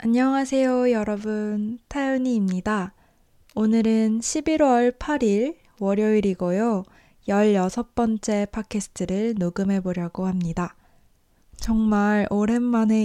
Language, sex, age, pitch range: Korean, female, 20-39, 195-240 Hz